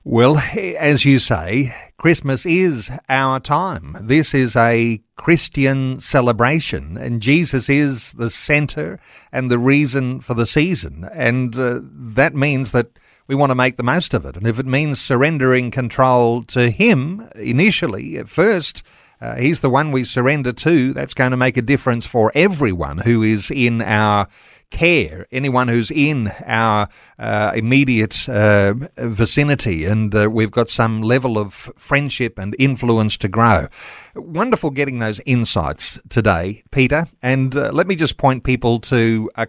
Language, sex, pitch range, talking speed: English, male, 115-145 Hz, 155 wpm